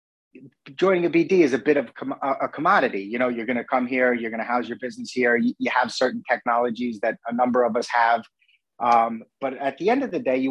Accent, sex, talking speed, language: American, male, 240 wpm, English